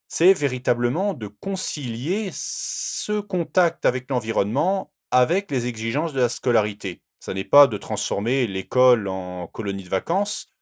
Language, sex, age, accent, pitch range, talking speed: French, male, 40-59, French, 100-165 Hz, 135 wpm